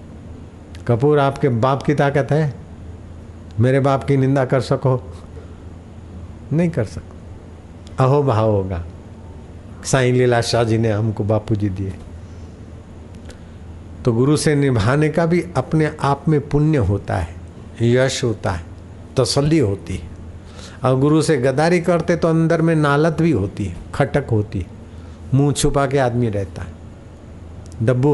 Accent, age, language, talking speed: native, 50-69, Hindi, 145 wpm